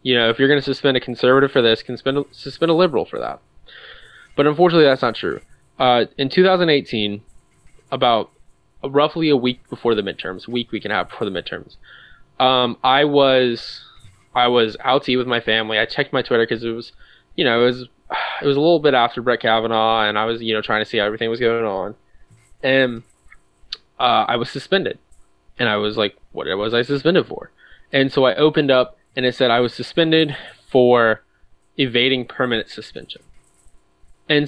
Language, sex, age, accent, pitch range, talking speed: English, male, 10-29, American, 105-135 Hz, 200 wpm